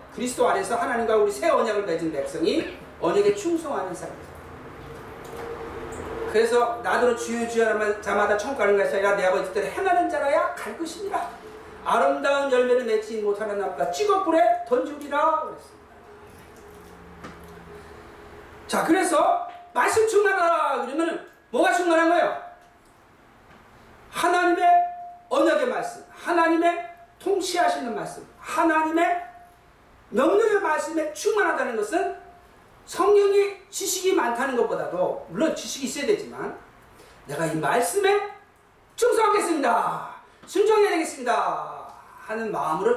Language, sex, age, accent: Korean, male, 40-59, native